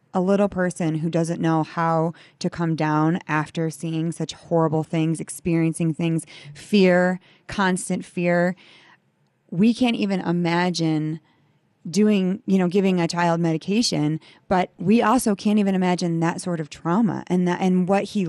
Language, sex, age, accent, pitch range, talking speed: English, female, 20-39, American, 165-195 Hz, 150 wpm